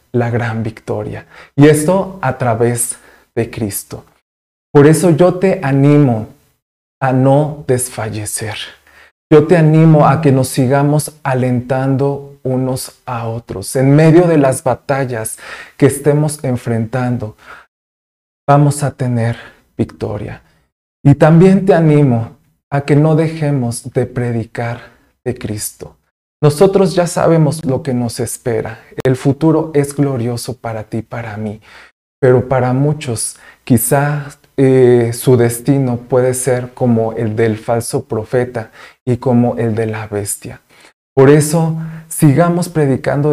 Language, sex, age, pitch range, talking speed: Spanish, male, 40-59, 120-145 Hz, 125 wpm